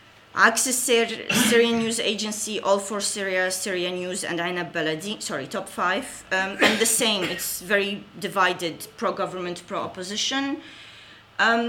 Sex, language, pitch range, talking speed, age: female, English, 180-215 Hz, 130 wpm, 30-49